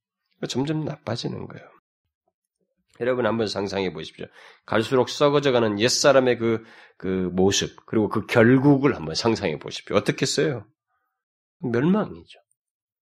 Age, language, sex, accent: 40-59, Korean, male, native